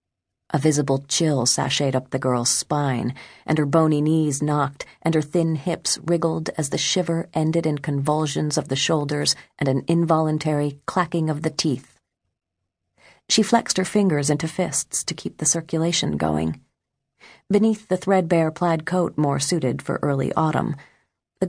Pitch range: 145-180 Hz